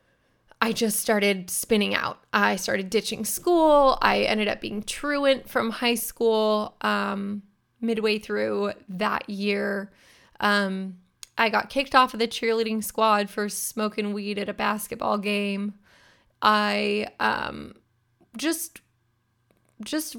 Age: 20-39